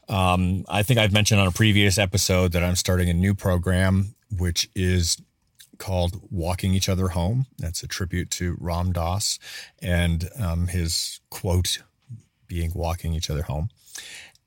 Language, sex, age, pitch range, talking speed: English, male, 30-49, 90-105 Hz, 155 wpm